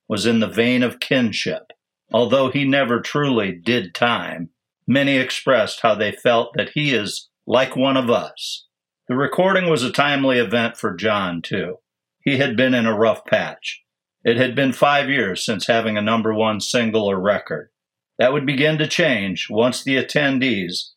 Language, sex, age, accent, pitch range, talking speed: English, male, 50-69, American, 110-135 Hz, 175 wpm